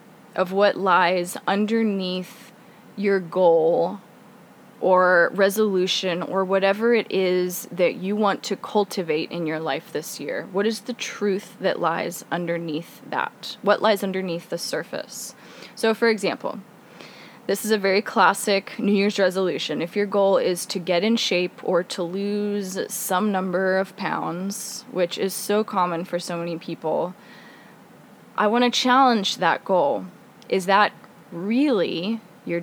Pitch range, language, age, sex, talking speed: 180-230 Hz, English, 20-39, female, 145 wpm